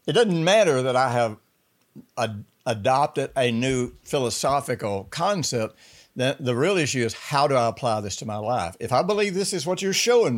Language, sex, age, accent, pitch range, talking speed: English, male, 60-79, American, 110-140 Hz, 190 wpm